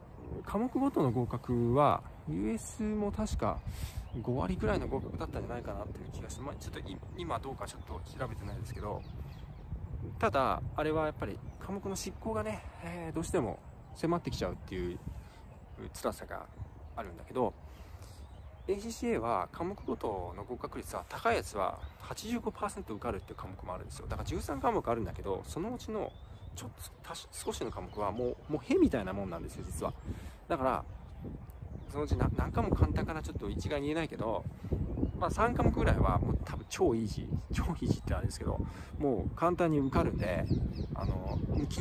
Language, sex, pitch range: Japanese, male, 90-130 Hz